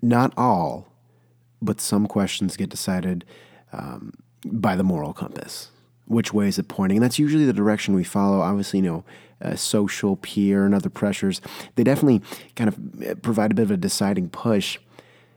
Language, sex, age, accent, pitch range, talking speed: English, male, 30-49, American, 95-120 Hz, 170 wpm